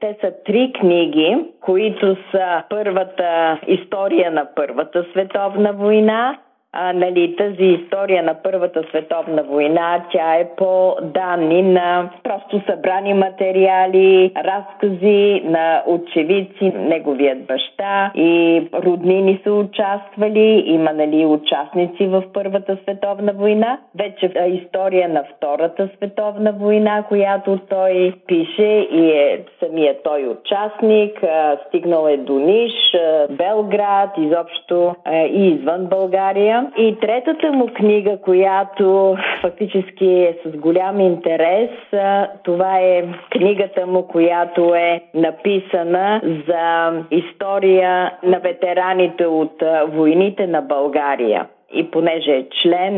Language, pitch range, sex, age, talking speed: Bulgarian, 165-200 Hz, female, 20-39, 115 wpm